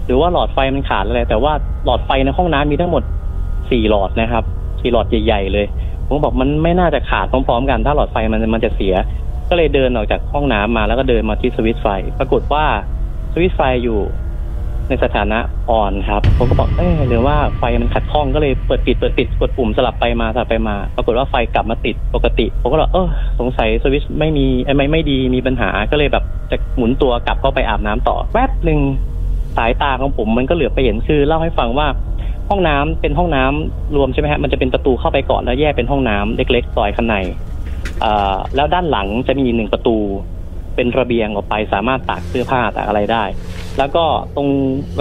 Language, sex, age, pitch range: Thai, male, 30-49, 95-135 Hz